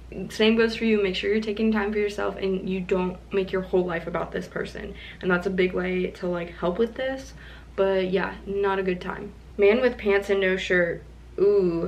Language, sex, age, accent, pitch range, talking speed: English, female, 20-39, American, 185-220 Hz, 220 wpm